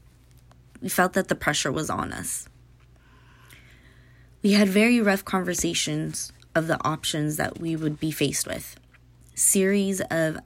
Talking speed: 140 wpm